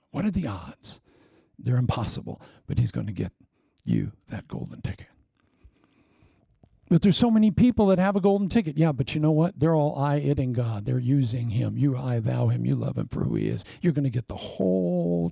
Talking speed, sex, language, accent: 210 wpm, male, English, American